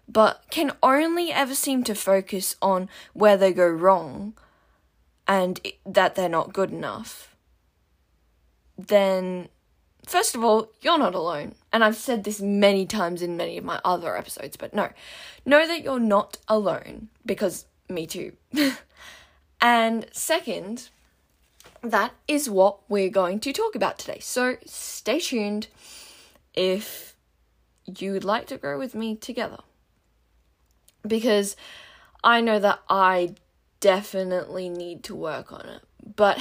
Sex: female